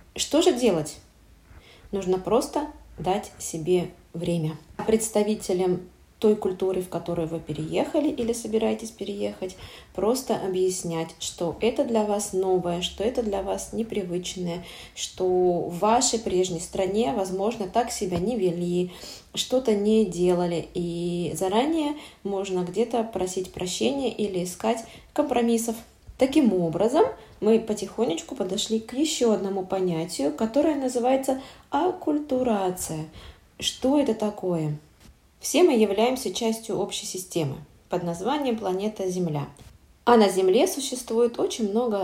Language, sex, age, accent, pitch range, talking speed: Russian, female, 20-39, native, 180-235 Hz, 120 wpm